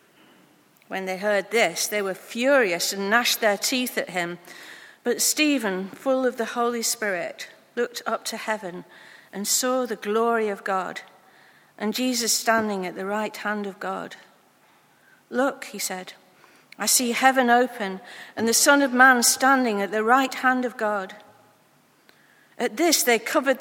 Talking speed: 160 wpm